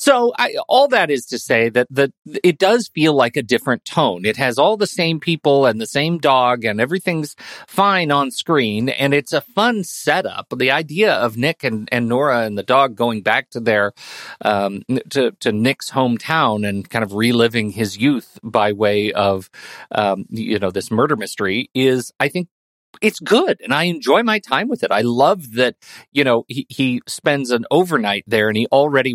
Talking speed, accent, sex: 200 wpm, American, male